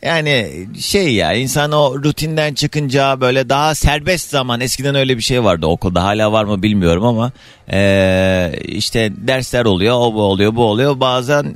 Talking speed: 165 wpm